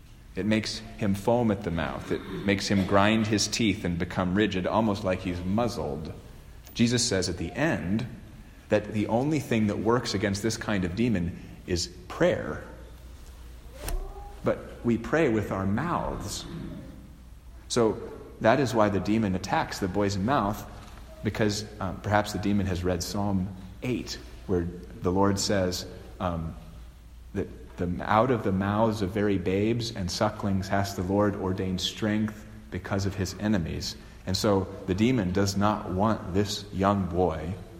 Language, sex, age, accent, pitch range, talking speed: English, male, 40-59, American, 90-110 Hz, 155 wpm